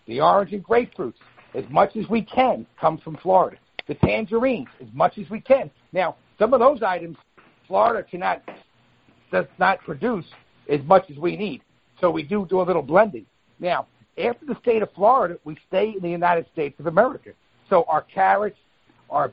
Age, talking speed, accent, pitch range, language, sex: 50-69, 185 wpm, American, 160-210 Hz, English, male